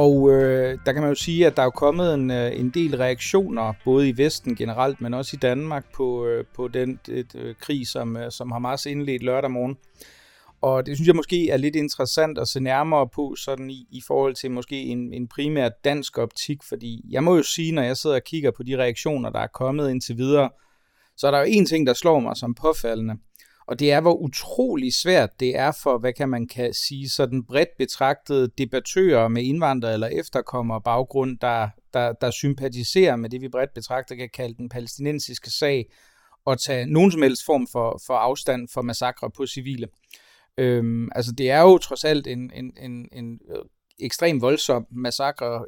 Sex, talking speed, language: male, 200 wpm, Danish